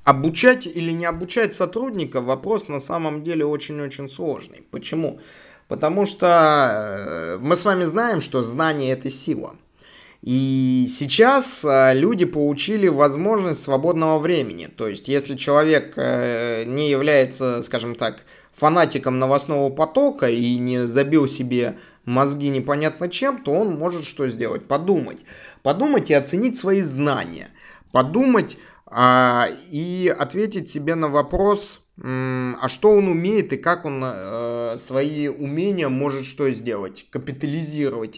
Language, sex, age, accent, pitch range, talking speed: Russian, male, 20-39, native, 130-175 Hz, 120 wpm